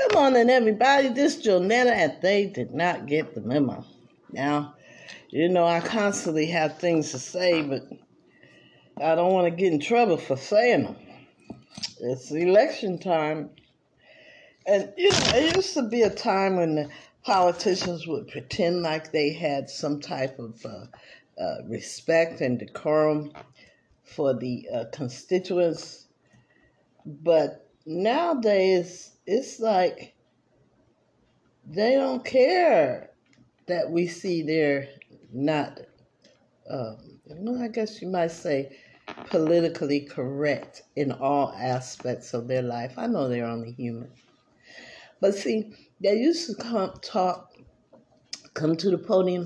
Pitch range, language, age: 145-195 Hz, English, 50-69